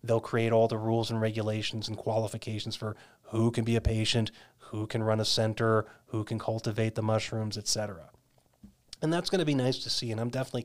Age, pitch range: 30-49, 110-130 Hz